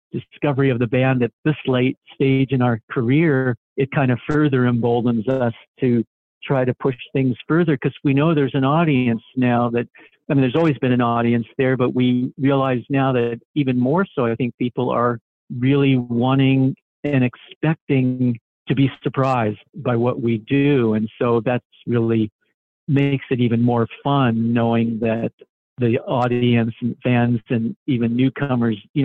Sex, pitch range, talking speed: male, 115-135 Hz, 165 wpm